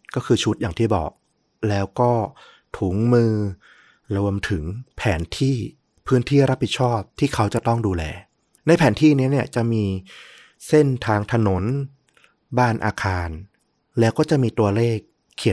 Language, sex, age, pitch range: Thai, male, 30-49, 95-125 Hz